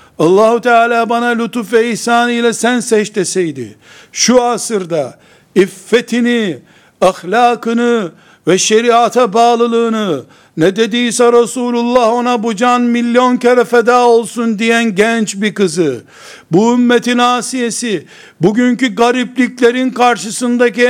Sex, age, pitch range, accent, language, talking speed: male, 60-79, 215-245 Hz, native, Turkish, 105 wpm